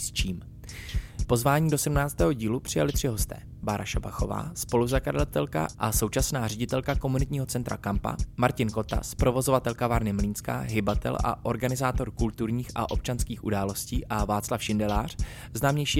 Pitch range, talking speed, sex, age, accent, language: 105-125 Hz, 120 wpm, male, 20-39, native, Czech